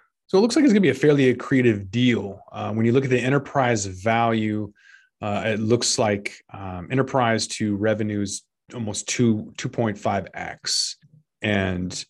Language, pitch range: English, 100-120 Hz